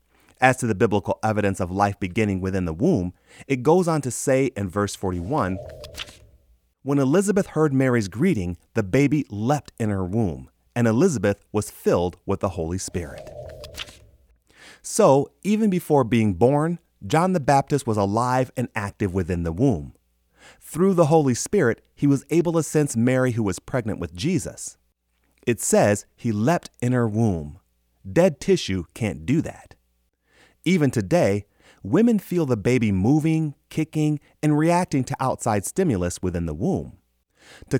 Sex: male